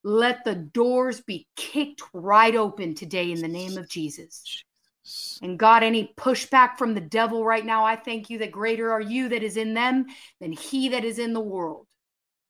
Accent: American